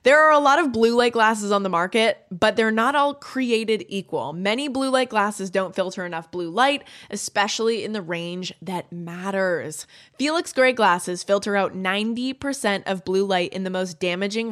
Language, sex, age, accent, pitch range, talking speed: English, female, 20-39, American, 190-260 Hz, 185 wpm